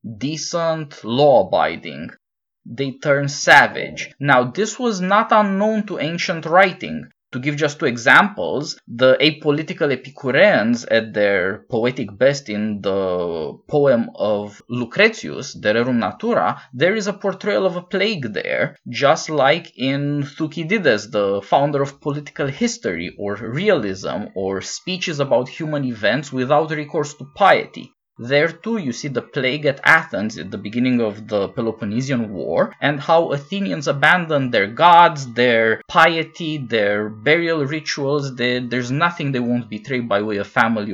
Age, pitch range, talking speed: 20-39, 120-170 Hz, 140 wpm